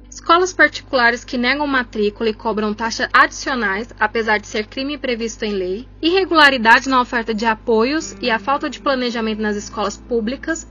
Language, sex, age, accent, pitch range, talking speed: English, female, 20-39, Brazilian, 225-285 Hz, 165 wpm